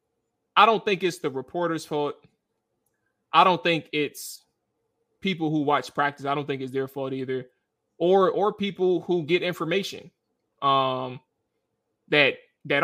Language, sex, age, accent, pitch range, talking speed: English, male, 20-39, American, 135-165 Hz, 145 wpm